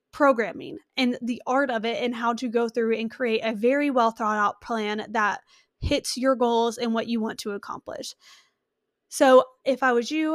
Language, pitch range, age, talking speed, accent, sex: English, 230-280 Hz, 20-39, 195 wpm, American, female